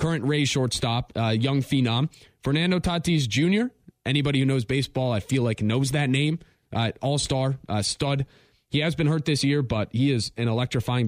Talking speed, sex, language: 180 wpm, male, English